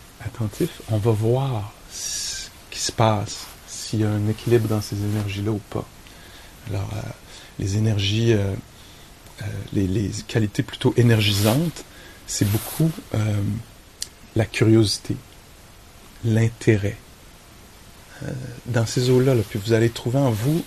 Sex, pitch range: male, 100-120 Hz